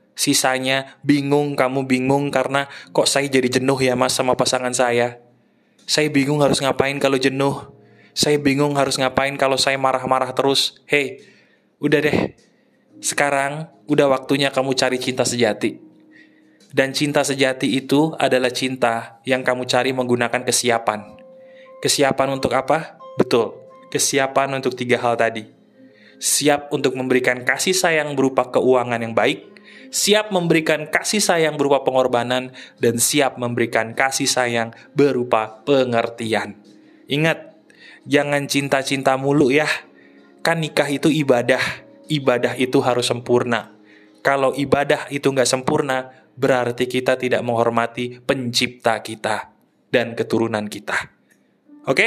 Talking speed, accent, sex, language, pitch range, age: 125 wpm, native, male, Indonesian, 125-145 Hz, 20-39